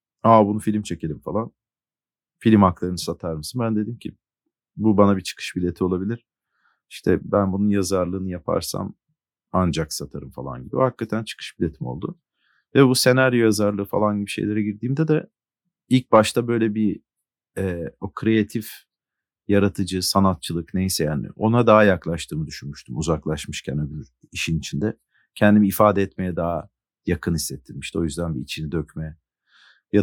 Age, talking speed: 40-59, 145 wpm